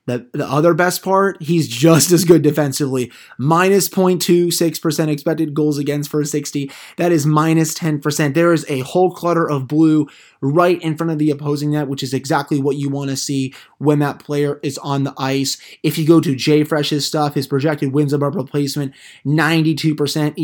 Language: English